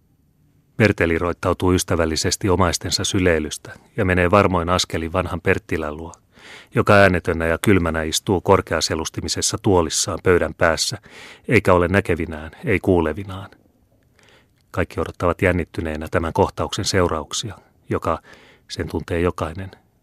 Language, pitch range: Finnish, 85-100 Hz